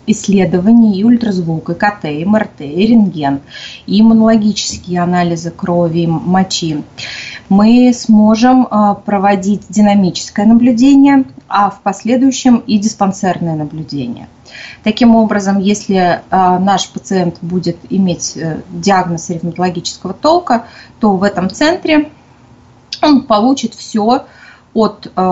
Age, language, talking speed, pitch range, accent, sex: 20-39, Russian, 105 wpm, 180-230 Hz, native, female